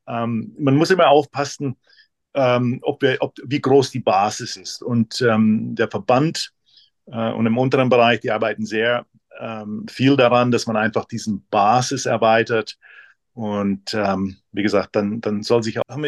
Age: 50-69